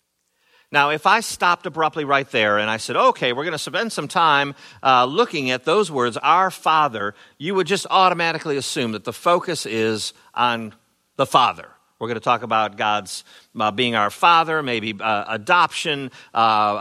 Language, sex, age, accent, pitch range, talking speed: English, male, 50-69, American, 115-170 Hz, 180 wpm